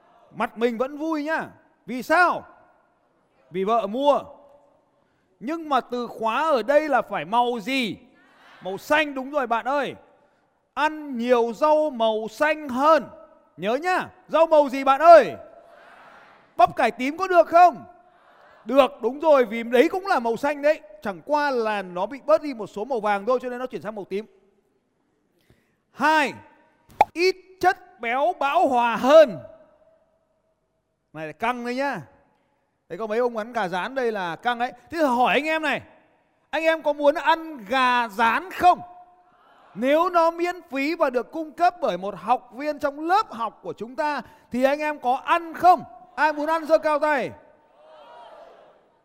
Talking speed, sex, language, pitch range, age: 170 wpm, male, Vietnamese, 245-320 Hz, 30-49